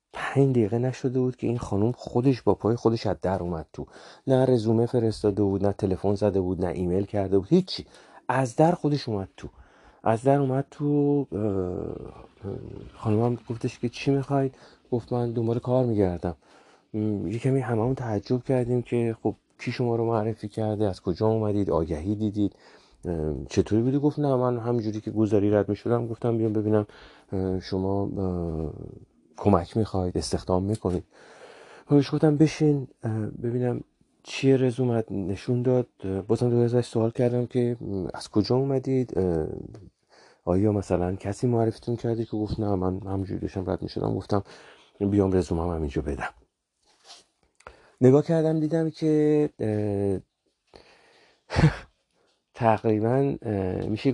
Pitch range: 100-125 Hz